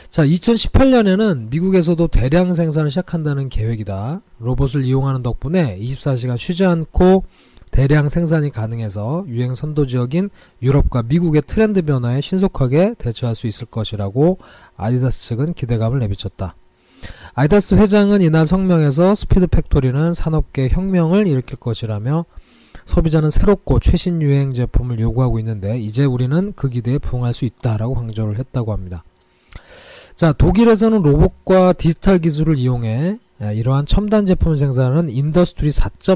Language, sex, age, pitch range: Korean, male, 20-39, 120-175 Hz